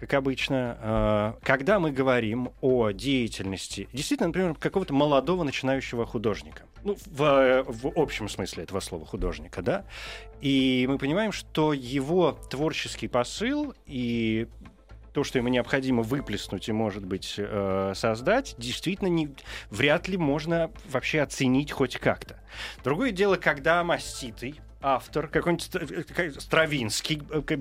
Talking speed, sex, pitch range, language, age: 115 wpm, male, 110-150 Hz, Russian, 30-49